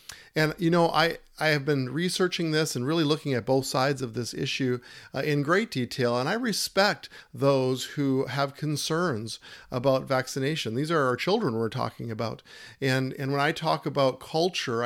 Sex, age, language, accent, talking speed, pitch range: male, 50-69, English, American, 180 wpm, 125-155 Hz